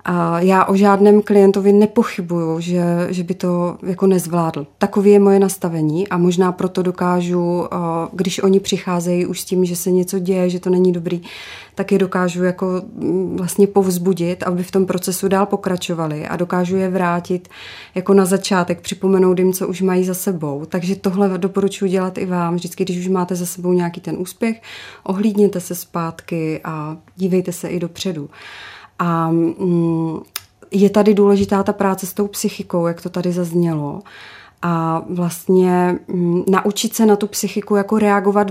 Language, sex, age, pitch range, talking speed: Czech, female, 30-49, 175-200 Hz, 160 wpm